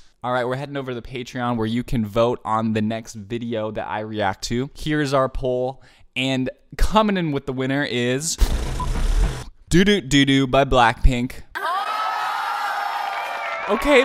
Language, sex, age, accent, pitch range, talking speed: English, male, 20-39, American, 110-150 Hz, 160 wpm